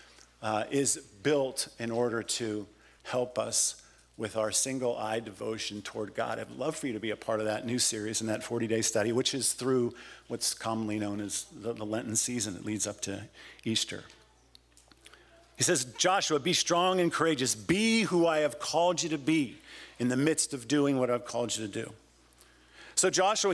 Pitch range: 115-185 Hz